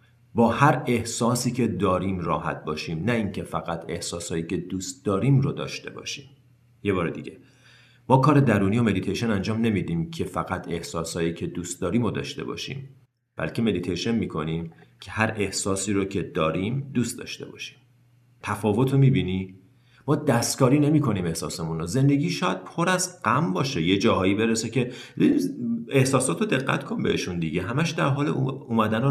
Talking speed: 155 wpm